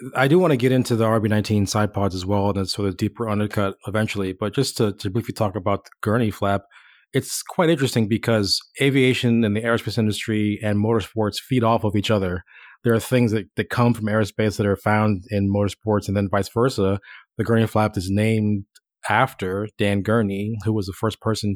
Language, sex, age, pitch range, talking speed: English, male, 30-49, 100-115 Hz, 205 wpm